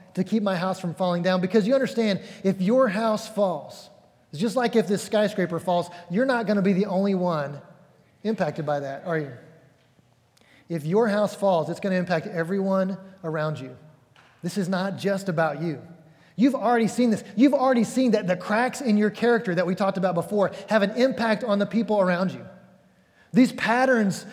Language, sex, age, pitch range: English, male, 30-49, 160-210 Hz